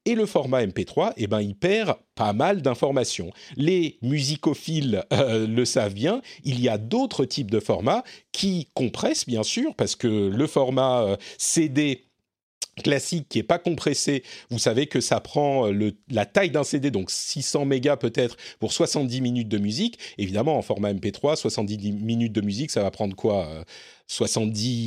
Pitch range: 115-170 Hz